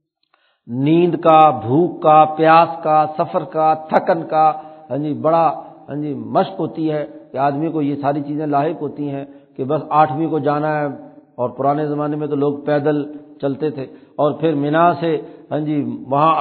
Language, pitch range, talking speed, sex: Urdu, 150-170 Hz, 175 wpm, male